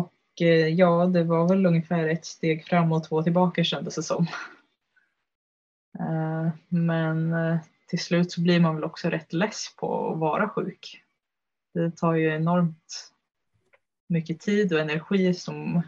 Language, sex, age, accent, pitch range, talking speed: Swedish, female, 20-39, native, 160-175 Hz, 145 wpm